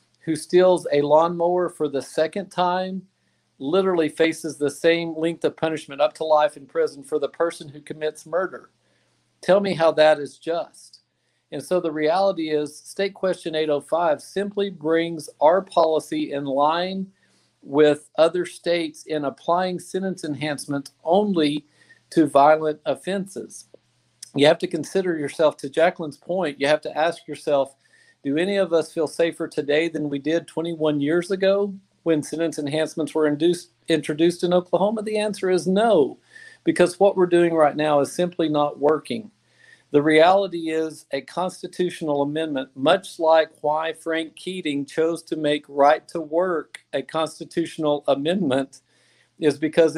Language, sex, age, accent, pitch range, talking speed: English, male, 50-69, American, 150-175 Hz, 150 wpm